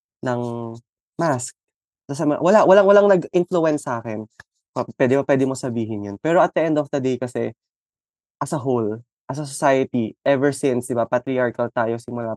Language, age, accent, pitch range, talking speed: Filipino, 20-39, native, 120-160 Hz, 165 wpm